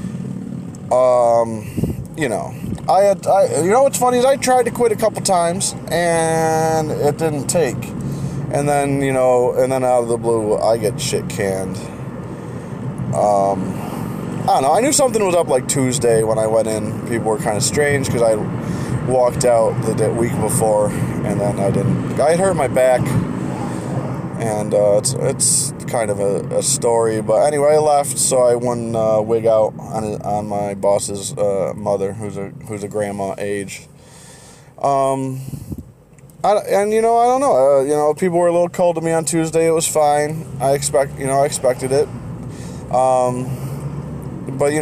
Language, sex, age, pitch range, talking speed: English, male, 20-39, 115-160 Hz, 185 wpm